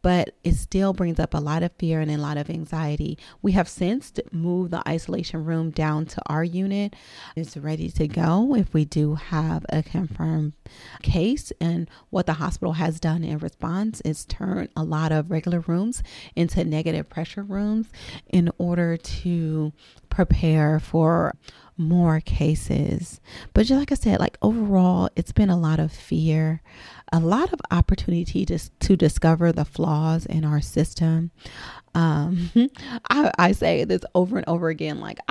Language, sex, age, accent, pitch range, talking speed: English, female, 30-49, American, 155-175 Hz, 165 wpm